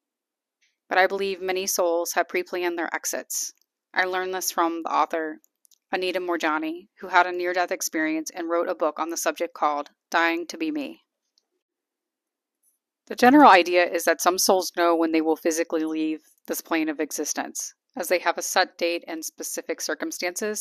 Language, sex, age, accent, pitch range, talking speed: English, female, 30-49, American, 165-220 Hz, 175 wpm